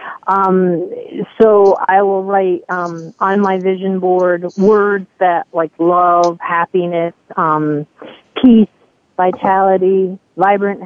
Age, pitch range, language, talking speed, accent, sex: 40-59, 180-205 Hz, English, 105 wpm, American, female